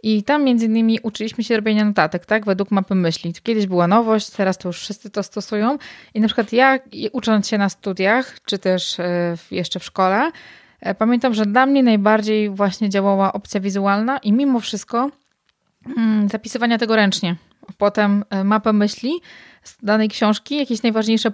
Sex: female